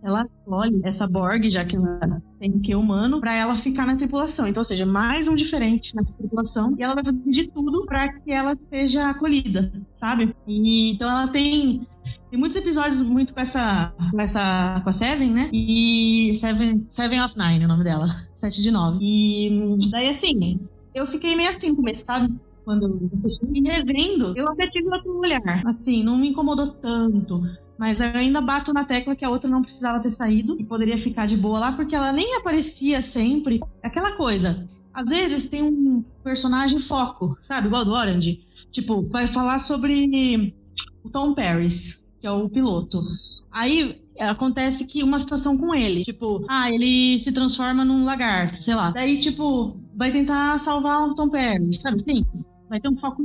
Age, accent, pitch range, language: 20-39, Brazilian, 210-275 Hz, Portuguese